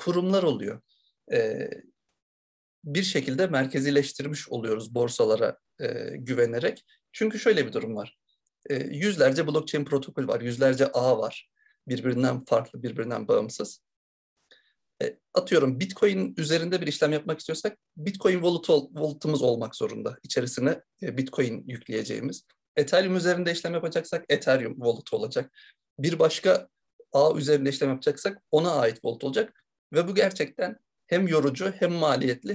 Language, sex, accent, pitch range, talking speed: Turkish, male, native, 140-205 Hz, 115 wpm